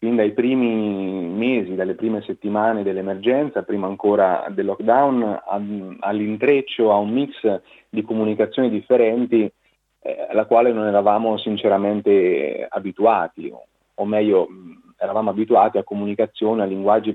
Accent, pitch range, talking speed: native, 100-115 Hz, 115 wpm